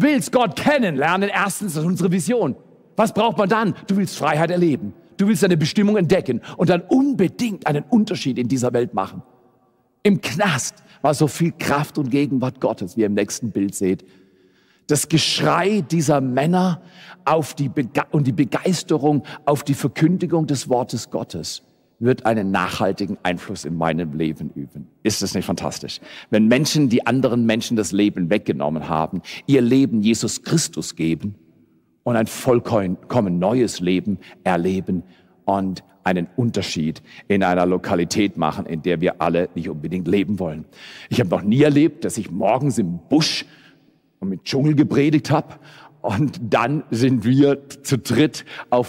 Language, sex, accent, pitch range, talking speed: German, male, German, 105-155 Hz, 160 wpm